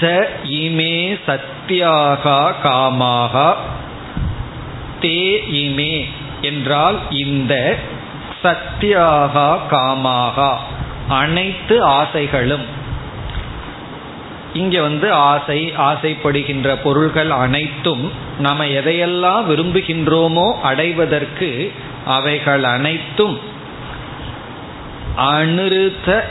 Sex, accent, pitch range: male, native, 140-170 Hz